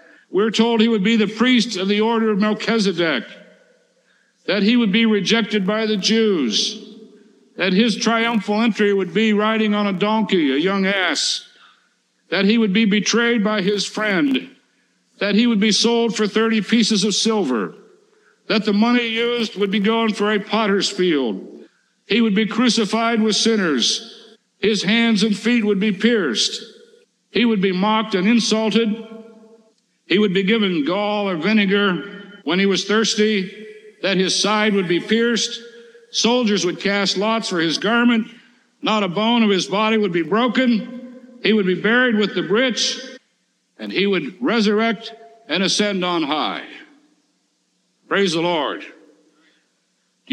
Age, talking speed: 60-79, 160 wpm